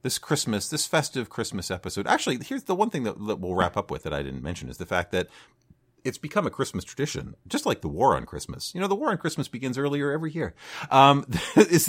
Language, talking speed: English, 240 wpm